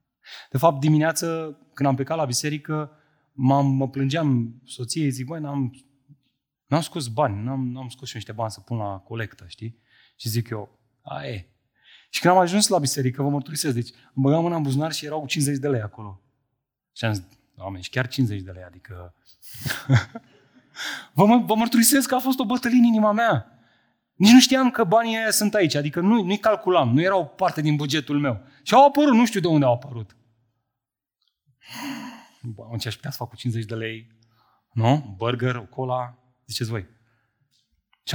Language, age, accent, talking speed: Romanian, 30-49, native, 185 wpm